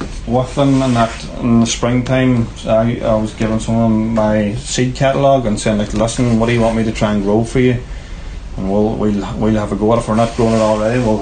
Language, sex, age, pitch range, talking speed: English, male, 30-49, 100-115 Hz, 240 wpm